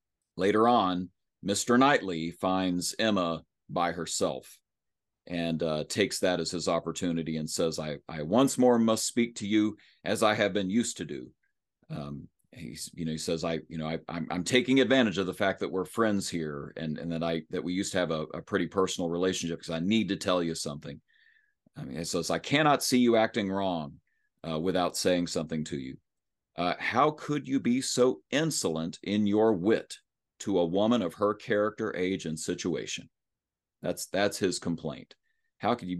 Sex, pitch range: male, 85-110 Hz